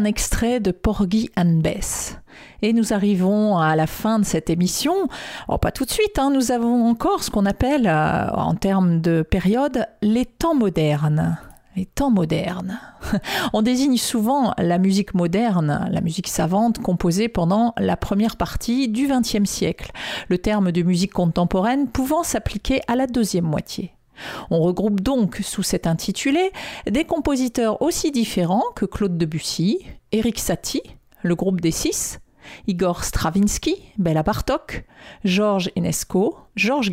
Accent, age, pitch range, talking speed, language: French, 40-59, 180-245 Hz, 150 wpm, French